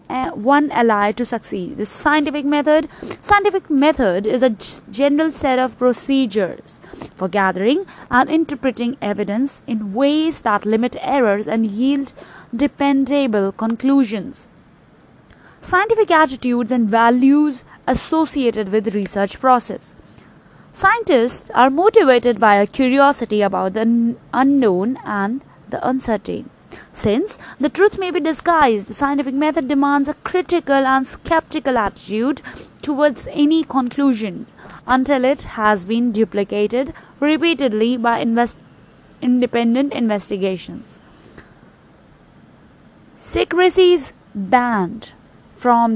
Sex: female